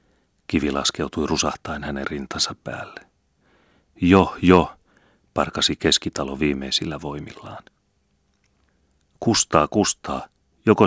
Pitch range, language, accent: 70-80 Hz, Finnish, native